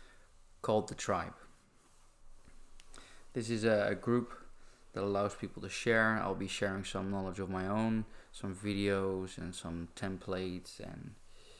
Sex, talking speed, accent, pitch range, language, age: male, 135 wpm, Dutch, 90-110 Hz, English, 20-39